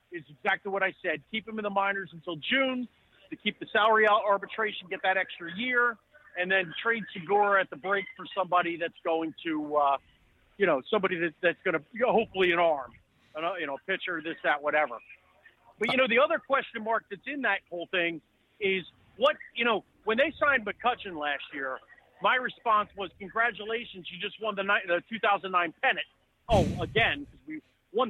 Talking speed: 195 wpm